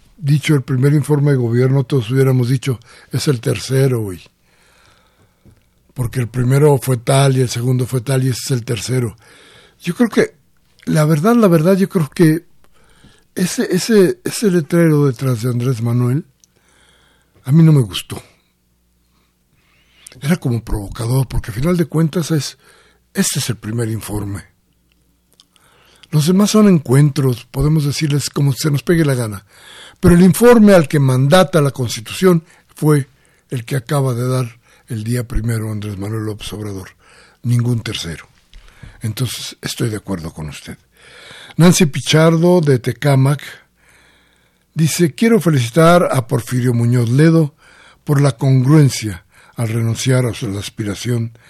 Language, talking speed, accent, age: Spanish, 145 wpm, Mexican, 60-79